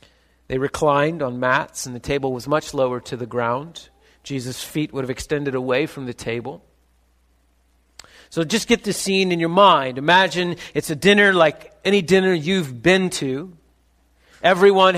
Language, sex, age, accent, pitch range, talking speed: English, male, 40-59, American, 115-175 Hz, 165 wpm